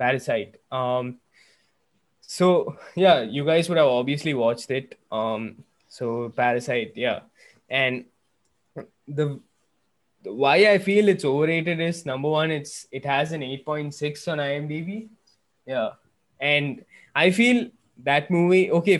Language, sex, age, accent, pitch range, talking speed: English, male, 20-39, Indian, 130-160 Hz, 135 wpm